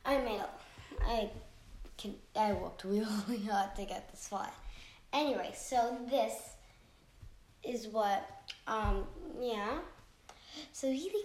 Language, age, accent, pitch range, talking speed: English, 10-29, American, 210-295 Hz, 110 wpm